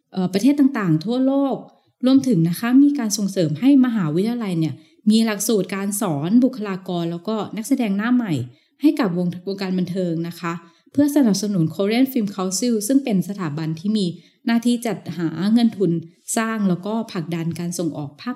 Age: 20-39